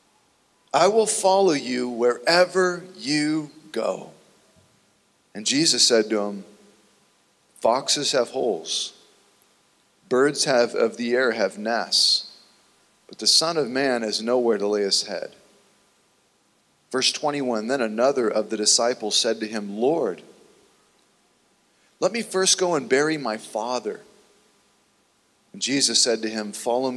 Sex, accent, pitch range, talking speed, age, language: male, American, 110-130 Hz, 125 wpm, 40-59, English